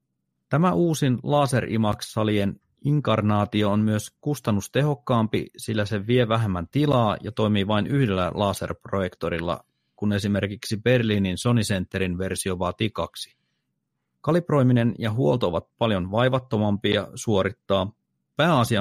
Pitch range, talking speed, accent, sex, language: 95-120 Hz, 110 wpm, native, male, Finnish